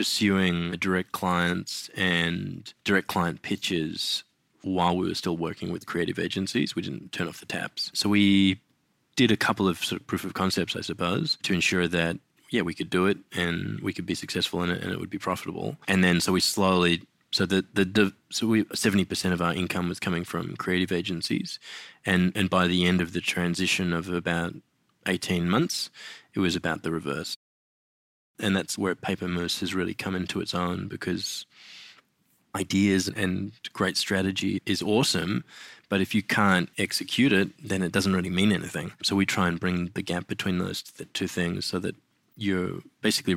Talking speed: 185 wpm